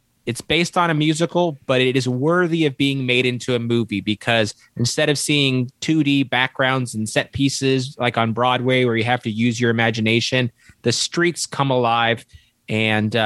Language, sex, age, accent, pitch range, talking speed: English, male, 20-39, American, 115-135 Hz, 175 wpm